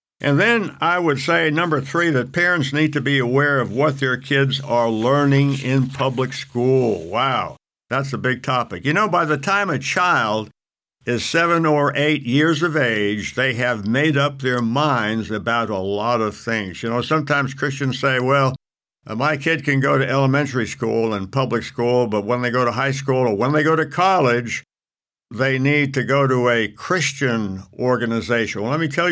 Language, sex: English, male